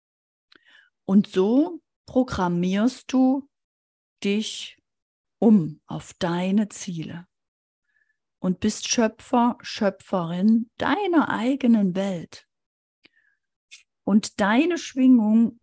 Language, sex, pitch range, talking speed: German, female, 195-260 Hz, 75 wpm